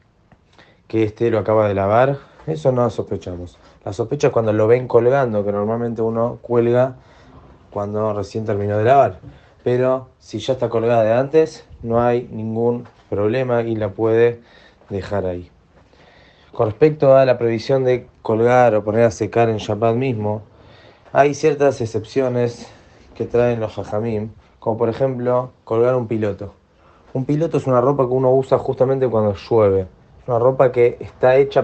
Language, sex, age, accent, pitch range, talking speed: Spanish, male, 20-39, Argentinian, 110-130 Hz, 160 wpm